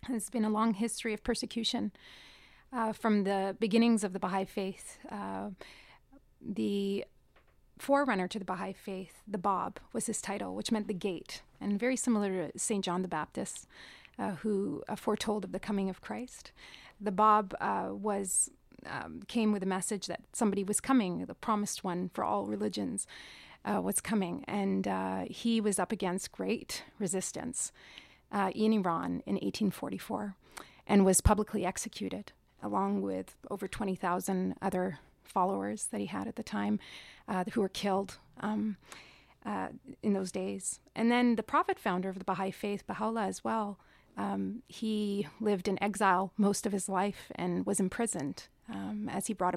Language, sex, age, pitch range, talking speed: English, female, 30-49, 180-215 Hz, 165 wpm